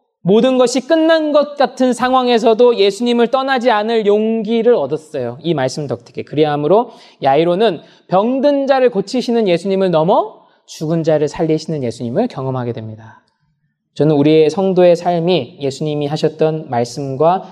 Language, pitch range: Korean, 125-185 Hz